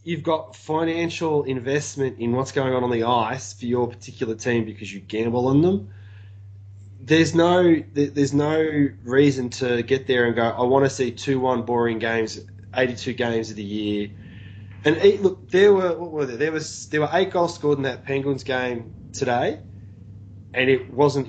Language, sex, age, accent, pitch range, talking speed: English, male, 20-39, Australian, 110-145 Hz, 180 wpm